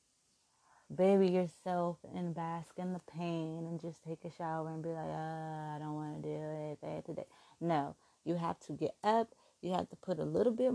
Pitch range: 165-215 Hz